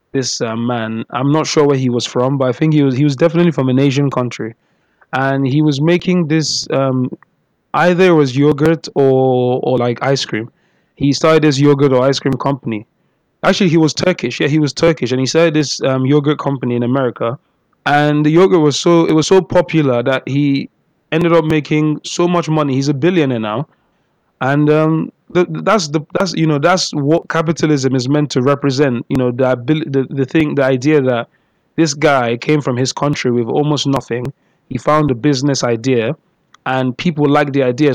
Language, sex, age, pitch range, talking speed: English, male, 20-39, 125-155 Hz, 200 wpm